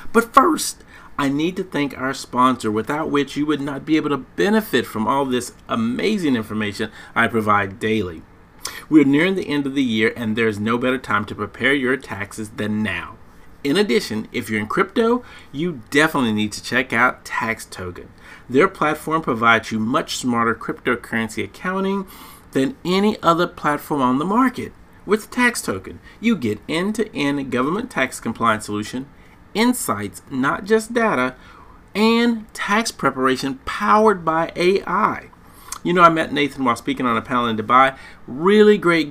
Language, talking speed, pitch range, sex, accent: English, 160 wpm, 110-180 Hz, male, American